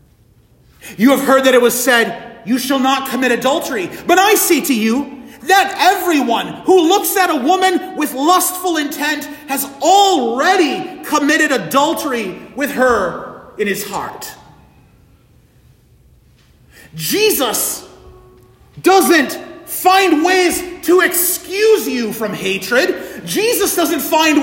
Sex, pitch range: male, 205-340 Hz